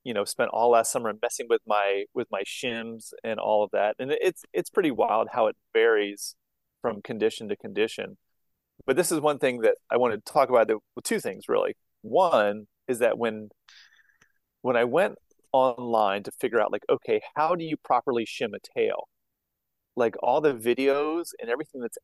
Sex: male